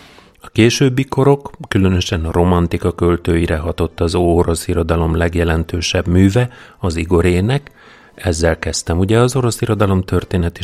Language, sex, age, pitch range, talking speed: Hungarian, male, 30-49, 85-105 Hz, 125 wpm